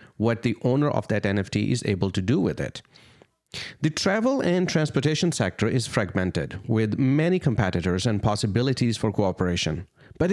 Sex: male